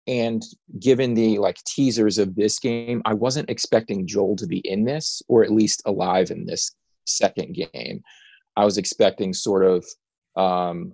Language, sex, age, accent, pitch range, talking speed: English, male, 30-49, American, 95-120 Hz, 165 wpm